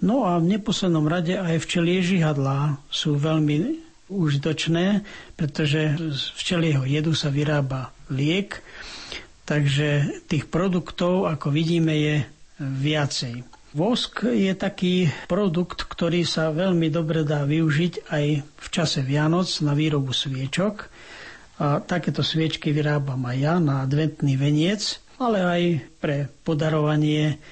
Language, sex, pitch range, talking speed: Slovak, male, 145-170 Hz, 120 wpm